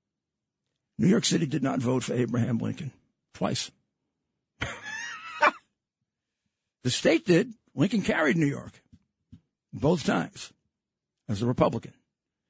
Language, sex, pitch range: English, male, 125-160 Hz